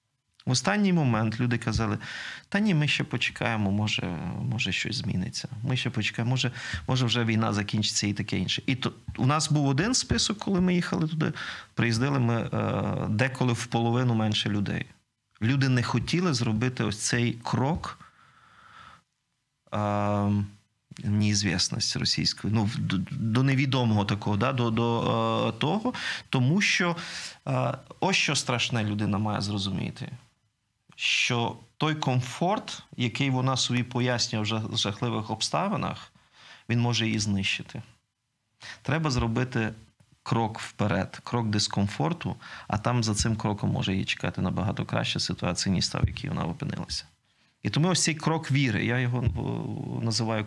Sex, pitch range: male, 110-135 Hz